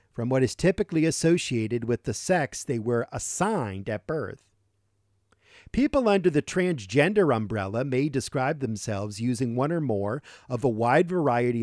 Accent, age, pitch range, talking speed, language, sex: American, 50-69, 105-150 Hz, 150 wpm, English, male